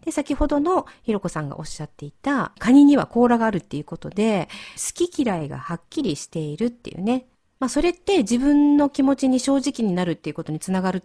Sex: female